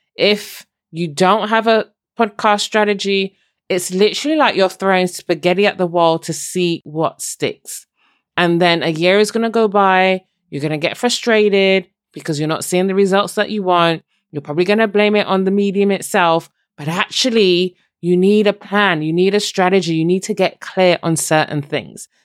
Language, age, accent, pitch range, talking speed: English, 20-39, British, 155-200 Hz, 190 wpm